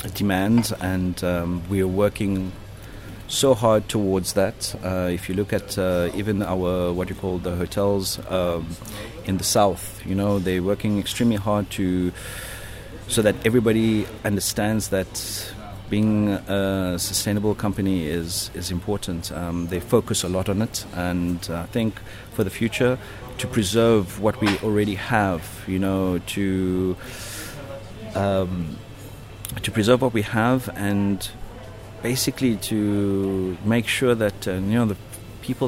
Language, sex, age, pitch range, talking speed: English, male, 30-49, 95-110 Hz, 145 wpm